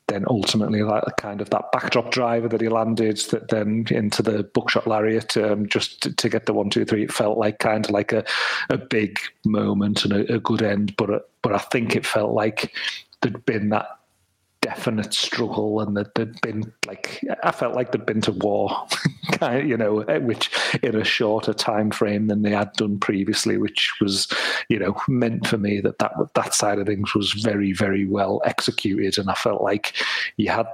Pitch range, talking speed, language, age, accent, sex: 100-110 Hz, 200 wpm, English, 40-59, British, male